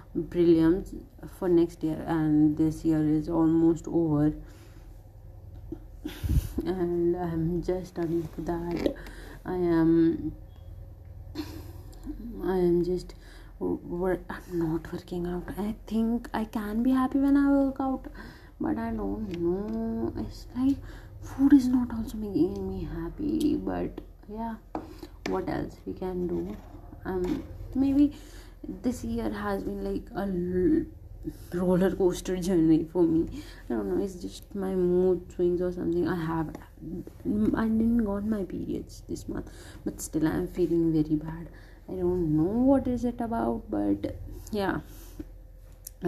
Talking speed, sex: 135 wpm, female